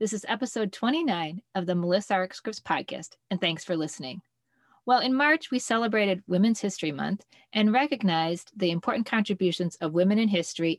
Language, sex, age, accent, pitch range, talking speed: English, female, 40-59, American, 170-230 Hz, 165 wpm